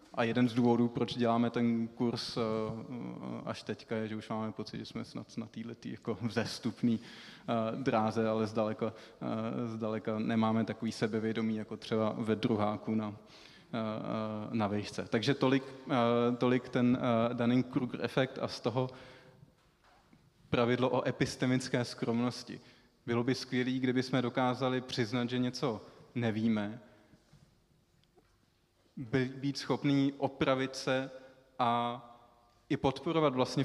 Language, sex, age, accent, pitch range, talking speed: Czech, male, 20-39, native, 115-130 Hz, 120 wpm